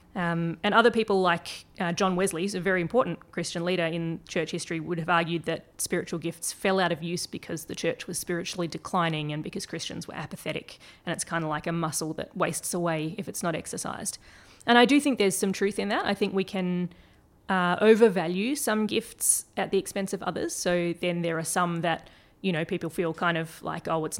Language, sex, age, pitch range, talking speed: English, female, 20-39, 165-190 Hz, 220 wpm